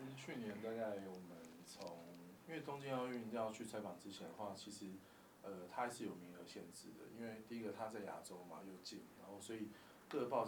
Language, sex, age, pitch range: Chinese, male, 20-39, 100-125 Hz